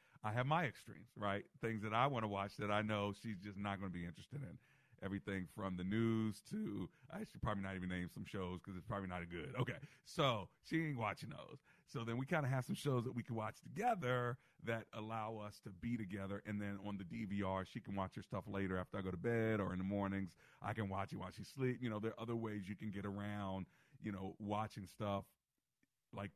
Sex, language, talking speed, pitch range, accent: male, English, 245 wpm, 95-125 Hz, American